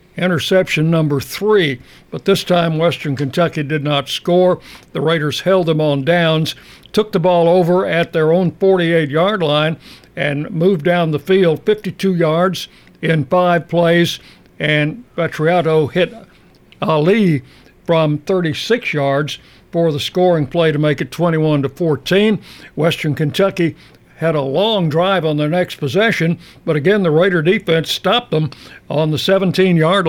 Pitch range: 155-180 Hz